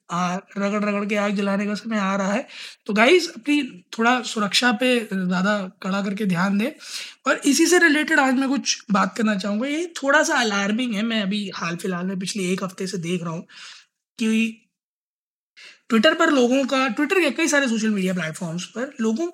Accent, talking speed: native, 190 wpm